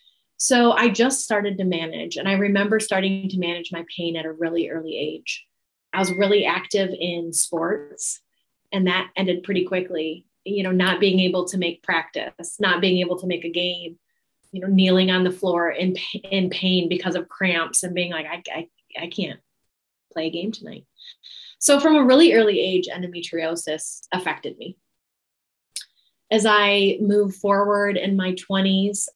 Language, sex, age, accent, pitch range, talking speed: English, female, 20-39, American, 180-205 Hz, 175 wpm